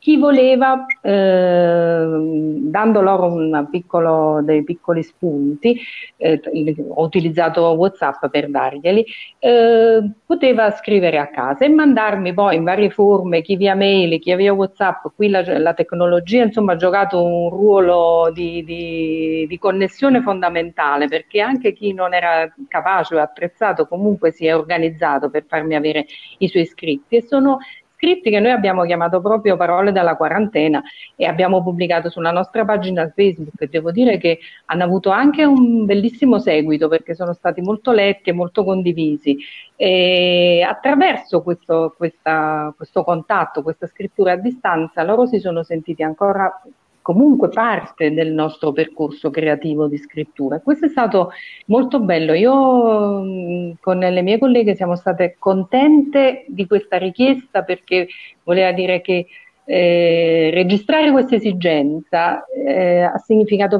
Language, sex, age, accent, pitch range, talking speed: Italian, female, 50-69, native, 165-210 Hz, 140 wpm